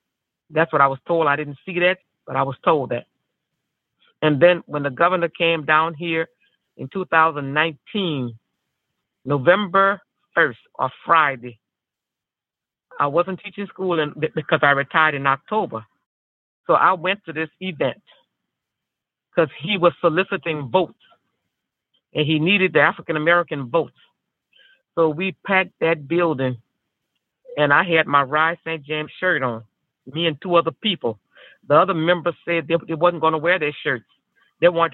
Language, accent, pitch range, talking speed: English, American, 150-180 Hz, 145 wpm